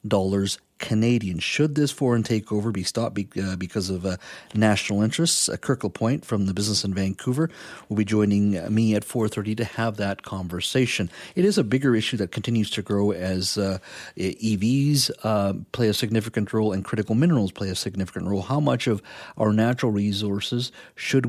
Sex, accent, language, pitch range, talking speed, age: male, American, English, 100-125 Hz, 185 wpm, 40-59